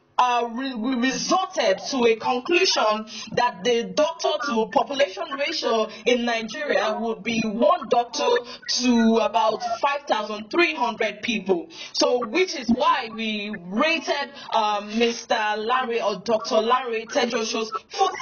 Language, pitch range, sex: English, 220-285 Hz, female